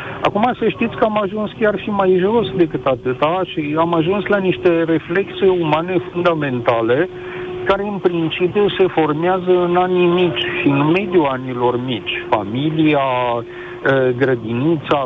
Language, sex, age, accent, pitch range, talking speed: Romanian, male, 50-69, native, 125-180 Hz, 140 wpm